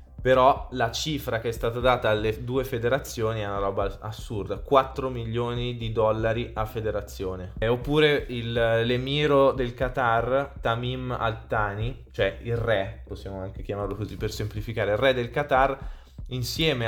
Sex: male